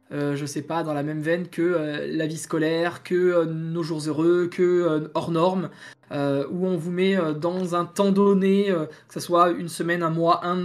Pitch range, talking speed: 175-210 Hz, 235 wpm